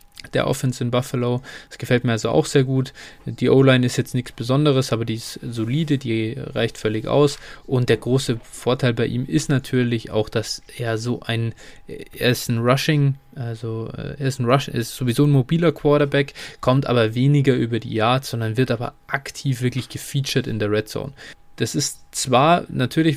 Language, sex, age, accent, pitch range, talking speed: German, male, 20-39, German, 115-135 Hz, 185 wpm